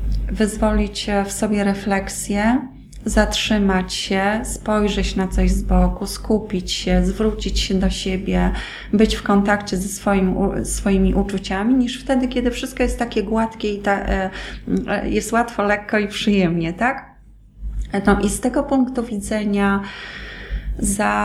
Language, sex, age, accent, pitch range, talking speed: Polish, female, 20-39, native, 200-230 Hz, 130 wpm